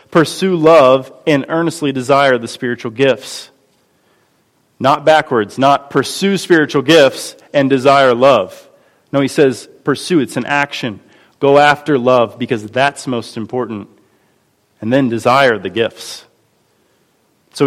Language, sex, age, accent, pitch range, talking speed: English, male, 30-49, American, 115-140 Hz, 125 wpm